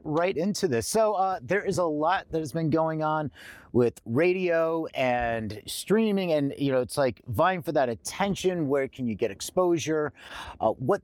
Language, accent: English, American